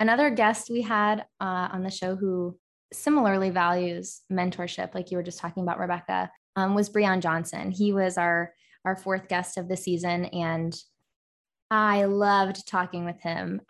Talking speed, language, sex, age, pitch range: 165 wpm, English, female, 20-39, 180-210 Hz